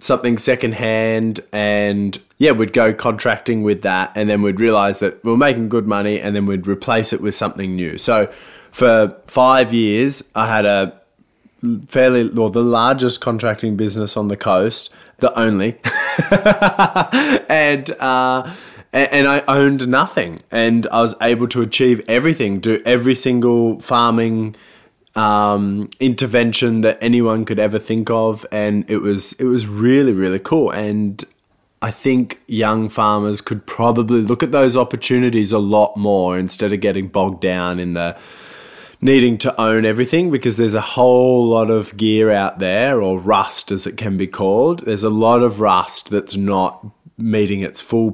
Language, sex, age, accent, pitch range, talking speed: English, male, 20-39, Australian, 105-125 Hz, 160 wpm